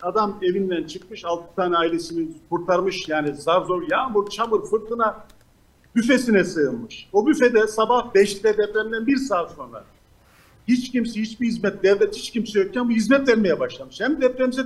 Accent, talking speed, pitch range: native, 150 wpm, 165-225 Hz